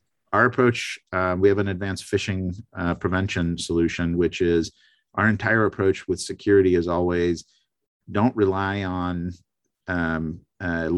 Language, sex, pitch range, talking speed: English, male, 85-100 Hz, 135 wpm